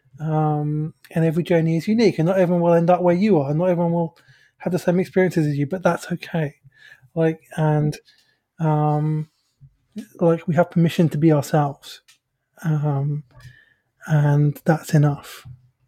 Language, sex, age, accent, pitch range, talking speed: English, male, 20-39, British, 150-190 Hz, 160 wpm